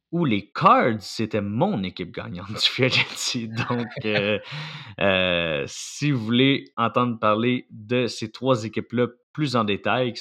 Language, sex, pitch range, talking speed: French, male, 105-125 Hz, 145 wpm